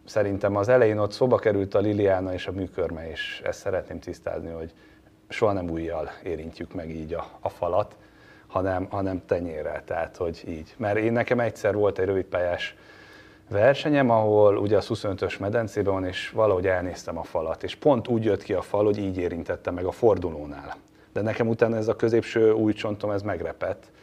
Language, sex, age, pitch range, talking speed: Hungarian, male, 30-49, 95-115 Hz, 180 wpm